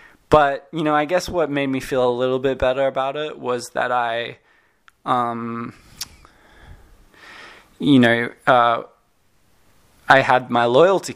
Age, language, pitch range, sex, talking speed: 20-39, English, 120-135 Hz, male, 140 wpm